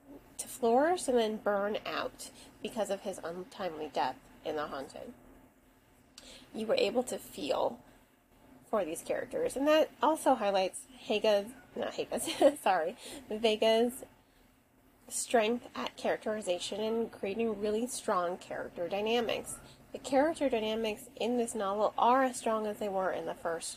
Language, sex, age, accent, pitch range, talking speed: English, female, 30-49, American, 205-260 Hz, 135 wpm